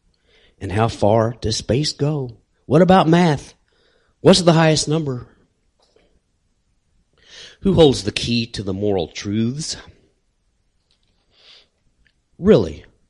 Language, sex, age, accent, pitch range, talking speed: English, male, 40-59, American, 90-120 Hz, 100 wpm